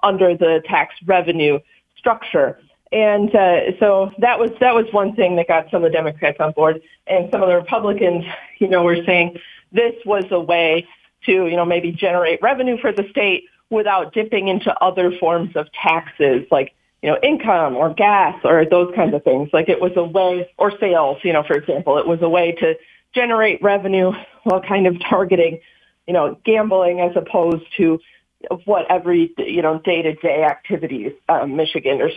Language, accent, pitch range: English, American, 175-215 Hz